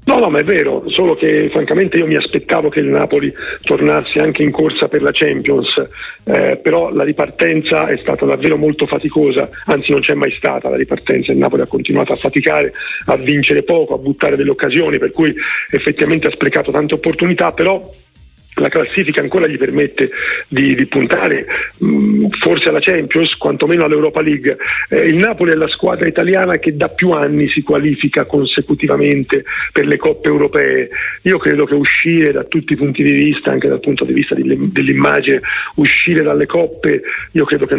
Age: 40-59